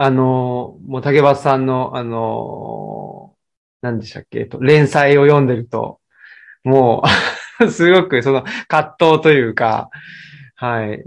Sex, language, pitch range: male, Japanese, 125-205 Hz